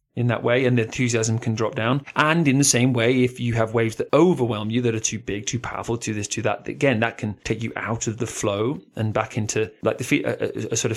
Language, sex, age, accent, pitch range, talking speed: English, male, 30-49, British, 115-175 Hz, 280 wpm